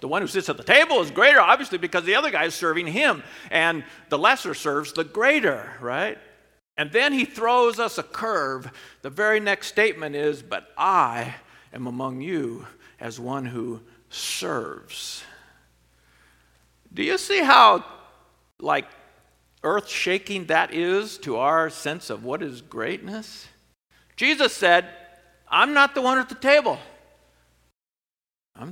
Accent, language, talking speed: American, English, 145 wpm